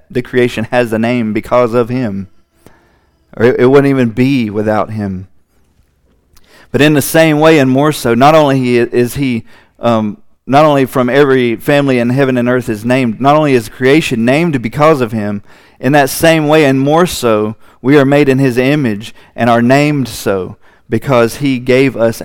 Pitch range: 95-130 Hz